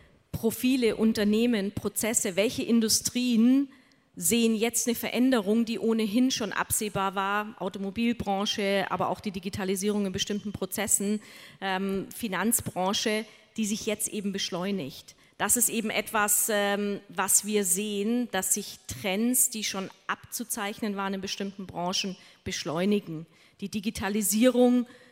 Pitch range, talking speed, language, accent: 200-225 Hz, 120 wpm, German, German